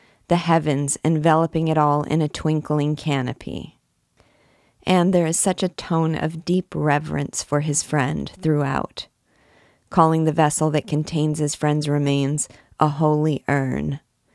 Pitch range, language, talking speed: 140-160 Hz, English, 140 wpm